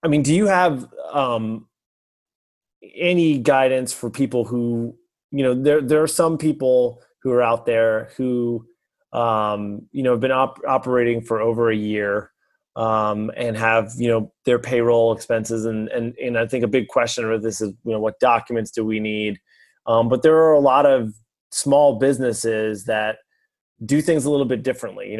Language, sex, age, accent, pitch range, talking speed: English, male, 30-49, American, 110-130 Hz, 185 wpm